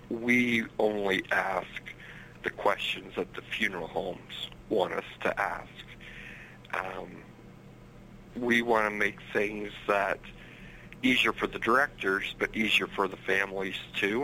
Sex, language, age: male, English, 60-79